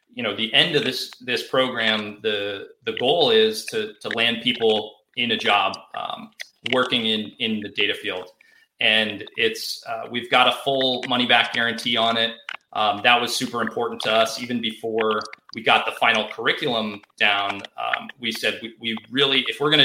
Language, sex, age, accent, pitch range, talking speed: English, male, 30-49, American, 110-140 Hz, 185 wpm